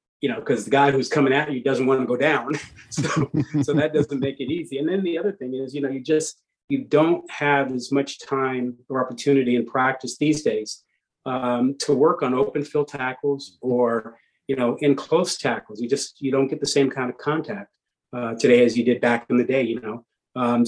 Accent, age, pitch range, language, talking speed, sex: American, 40-59, 125-145 Hz, English, 225 wpm, male